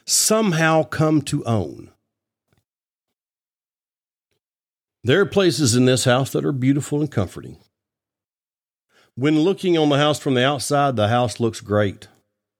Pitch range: 105-145 Hz